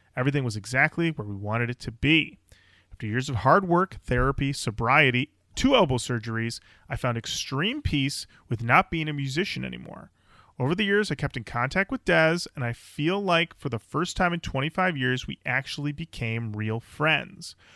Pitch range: 120-170 Hz